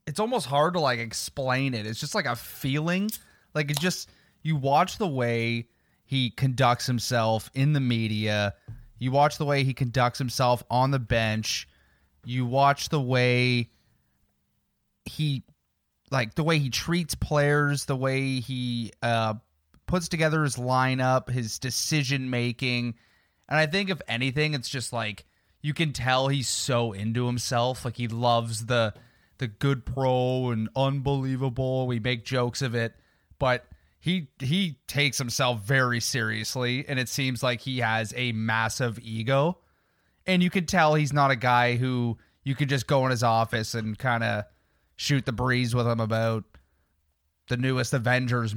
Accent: American